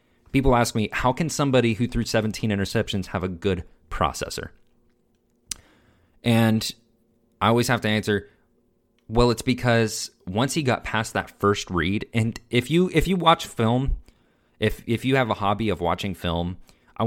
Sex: male